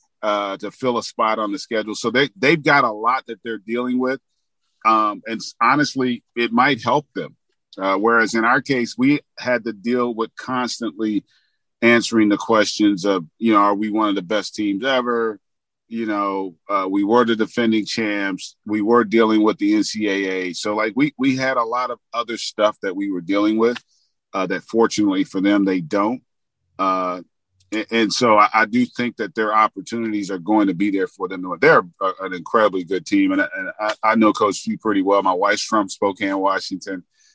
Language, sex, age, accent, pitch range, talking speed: English, male, 40-59, American, 100-120 Hz, 190 wpm